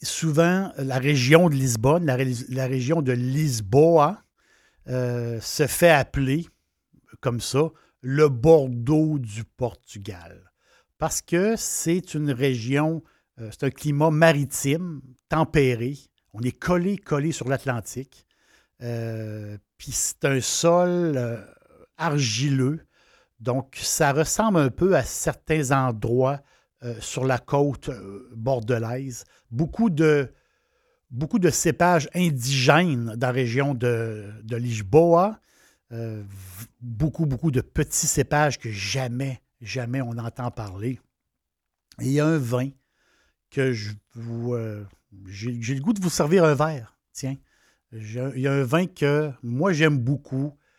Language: French